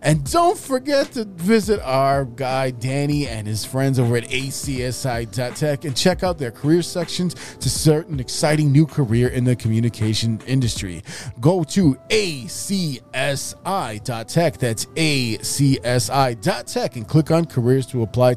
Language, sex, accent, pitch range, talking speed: English, male, American, 125-160 Hz, 135 wpm